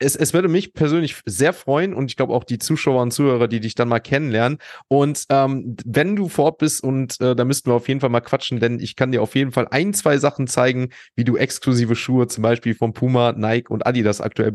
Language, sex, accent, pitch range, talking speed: German, male, German, 115-130 Hz, 245 wpm